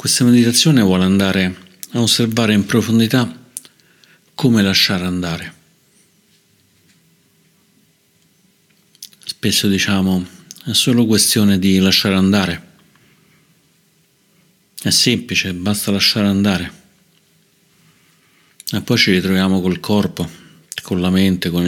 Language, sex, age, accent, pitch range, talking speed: Italian, male, 50-69, native, 90-115 Hz, 95 wpm